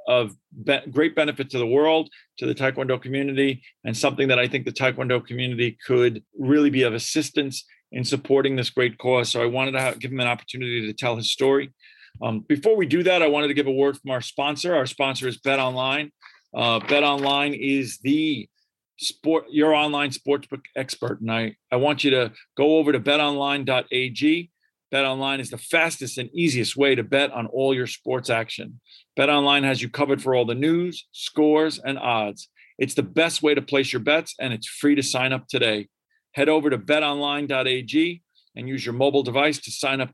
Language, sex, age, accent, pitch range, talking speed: English, male, 40-59, American, 125-150 Hz, 200 wpm